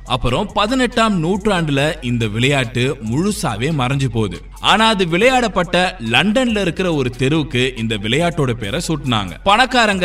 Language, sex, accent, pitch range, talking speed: Tamil, male, native, 120-195 Hz, 120 wpm